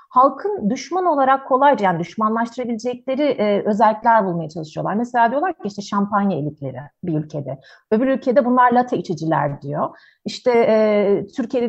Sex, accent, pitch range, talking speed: female, native, 200-290 Hz, 140 wpm